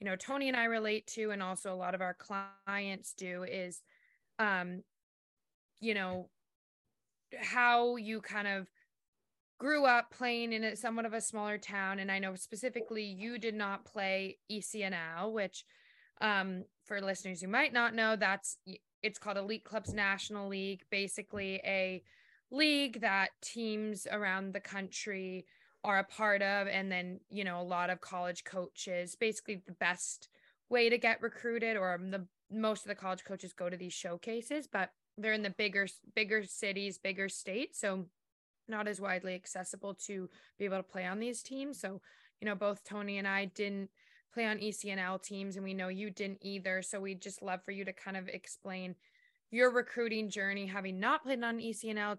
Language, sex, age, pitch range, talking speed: English, female, 20-39, 190-220 Hz, 175 wpm